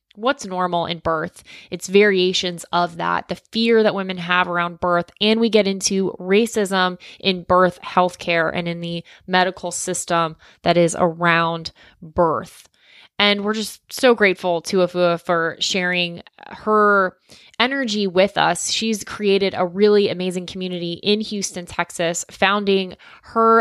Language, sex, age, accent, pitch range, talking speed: English, female, 20-39, American, 175-210 Hz, 140 wpm